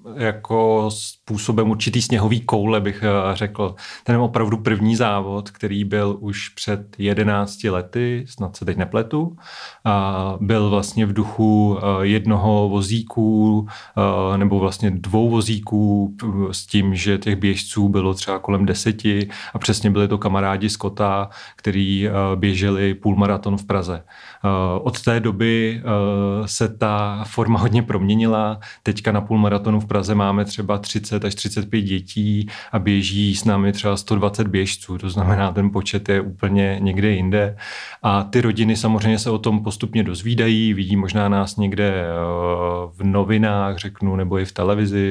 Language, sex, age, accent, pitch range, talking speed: Czech, male, 30-49, native, 100-110 Hz, 140 wpm